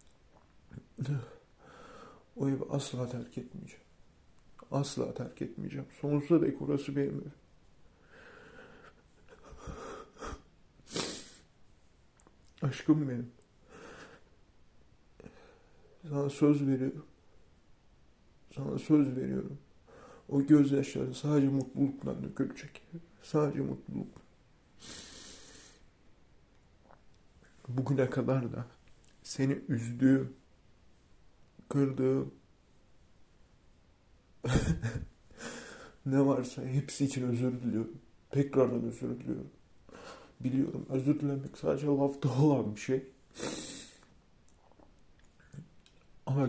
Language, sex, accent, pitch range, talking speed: Turkish, male, native, 120-145 Hz, 65 wpm